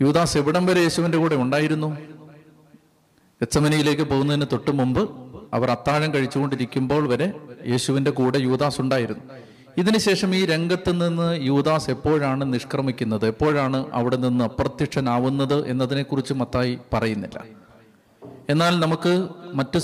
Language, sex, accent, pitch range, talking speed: Malayalam, male, native, 125-165 Hz, 105 wpm